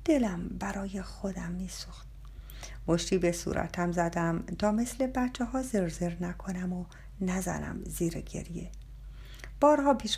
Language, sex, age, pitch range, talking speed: Persian, female, 50-69, 170-240 Hz, 120 wpm